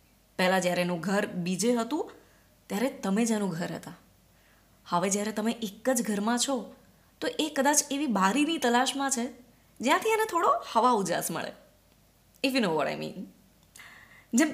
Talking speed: 155 wpm